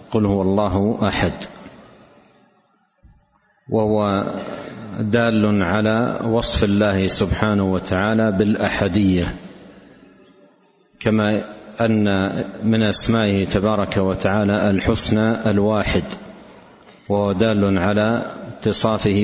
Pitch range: 100-110 Hz